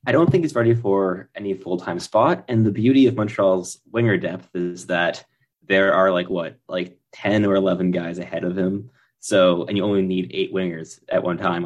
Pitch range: 95-120 Hz